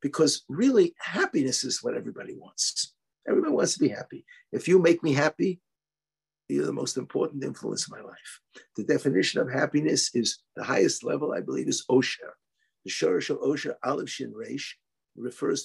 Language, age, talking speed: English, 60-79, 175 wpm